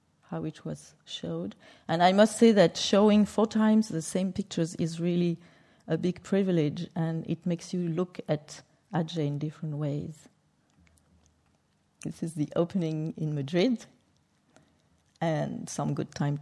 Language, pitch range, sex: English, 155-185 Hz, female